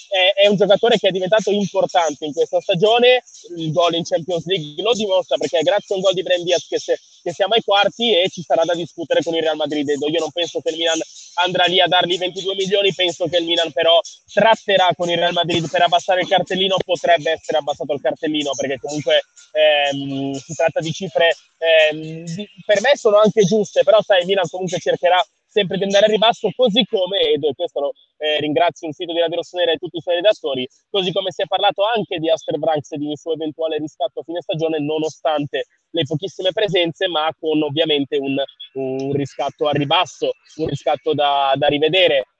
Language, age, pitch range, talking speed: Italian, 20-39, 160-200 Hz, 210 wpm